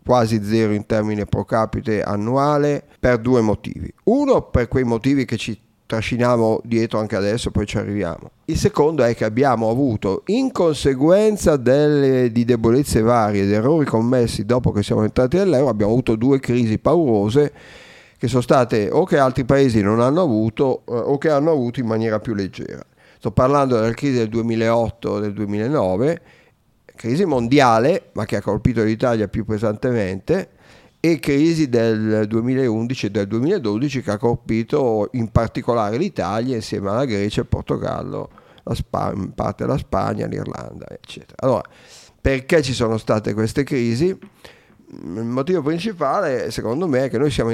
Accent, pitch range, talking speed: native, 110-145 Hz, 155 wpm